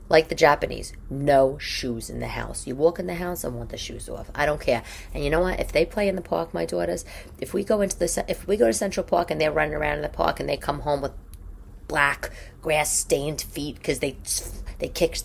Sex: female